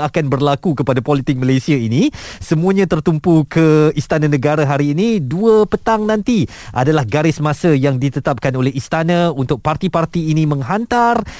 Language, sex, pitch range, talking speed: Malay, male, 135-190 Hz, 140 wpm